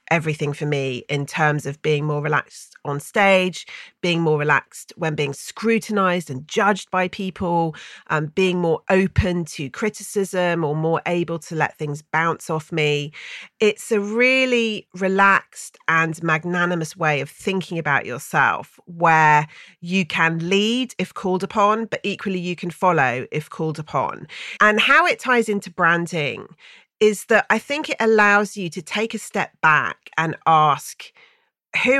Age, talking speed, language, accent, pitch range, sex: 40-59, 155 wpm, English, British, 155-215 Hz, female